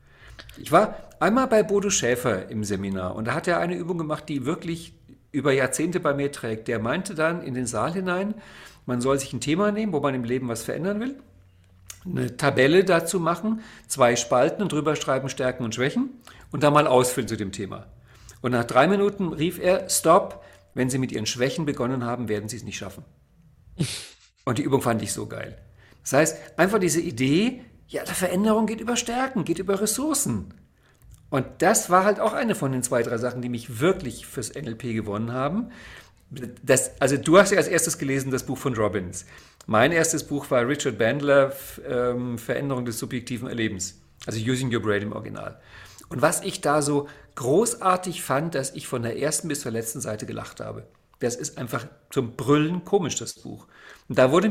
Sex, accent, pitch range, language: male, German, 120-170 Hz, German